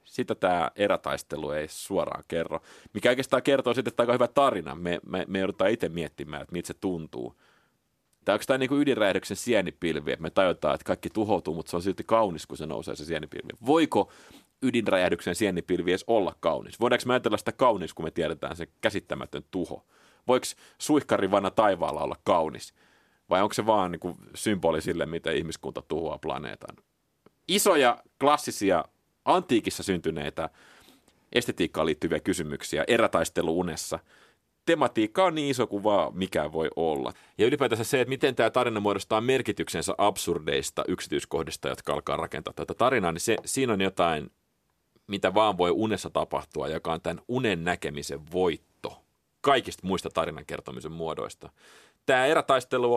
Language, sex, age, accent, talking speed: Finnish, male, 30-49, native, 155 wpm